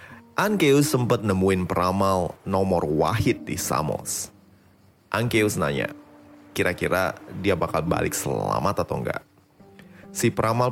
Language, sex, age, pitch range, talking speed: Indonesian, male, 30-49, 90-140 Hz, 105 wpm